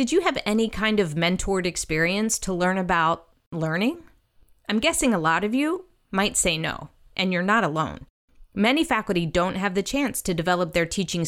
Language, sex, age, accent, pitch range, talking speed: English, female, 30-49, American, 175-235 Hz, 185 wpm